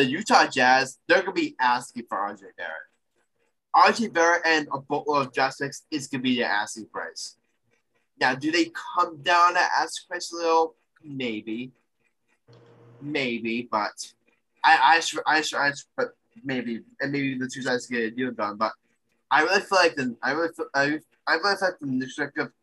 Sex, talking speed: male, 190 wpm